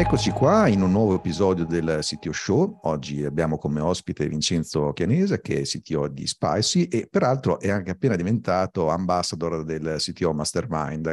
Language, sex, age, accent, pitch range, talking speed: Italian, male, 50-69, native, 85-110 Hz, 160 wpm